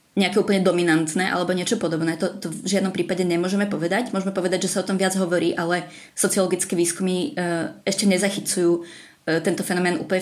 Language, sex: Czech, female